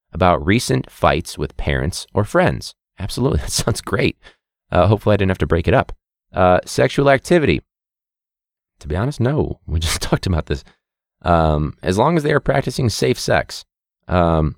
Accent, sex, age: American, male, 30-49